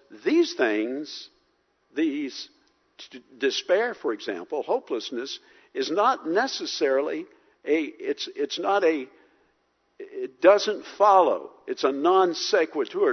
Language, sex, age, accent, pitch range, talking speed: English, male, 60-79, American, 340-415 Hz, 105 wpm